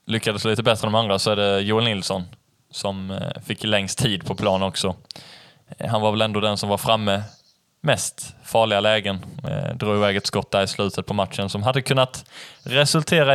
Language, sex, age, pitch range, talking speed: Swedish, male, 20-39, 105-130 Hz, 190 wpm